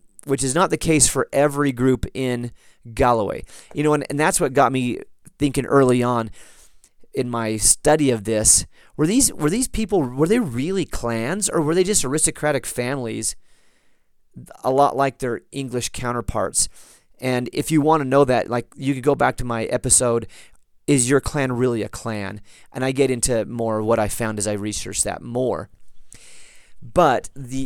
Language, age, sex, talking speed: English, 30-49, male, 180 wpm